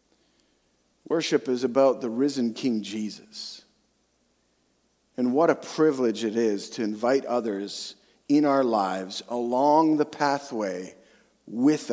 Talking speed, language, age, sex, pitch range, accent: 115 wpm, English, 40-59, male, 115-155 Hz, American